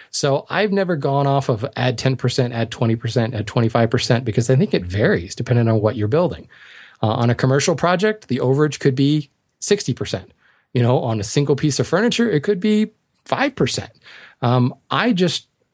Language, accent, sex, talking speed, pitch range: English, American, male, 180 wpm, 110-130 Hz